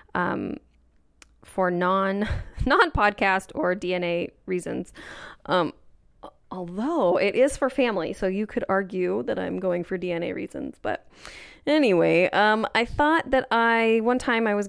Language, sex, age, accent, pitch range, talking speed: English, female, 20-39, American, 180-230 Hz, 140 wpm